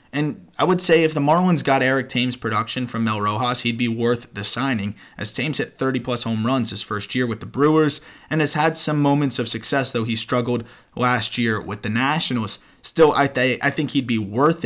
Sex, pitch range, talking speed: male, 120-145 Hz, 215 wpm